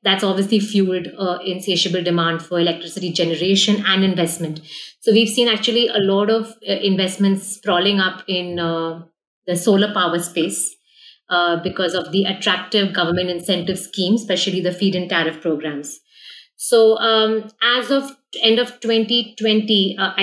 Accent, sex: Indian, female